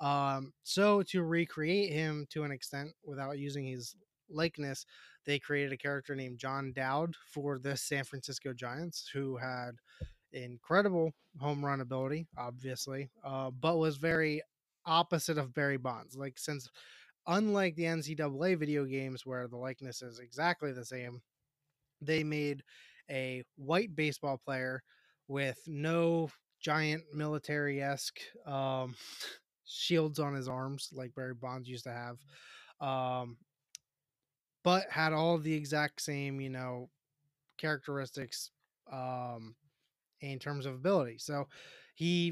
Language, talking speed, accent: English, 130 wpm, American